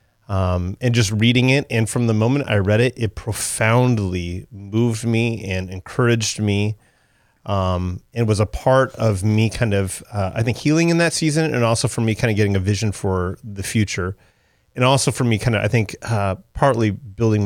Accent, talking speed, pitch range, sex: American, 200 wpm, 100-120 Hz, male